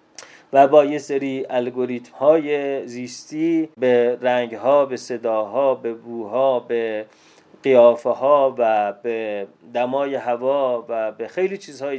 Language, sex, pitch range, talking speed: Persian, male, 115-140 Hz, 110 wpm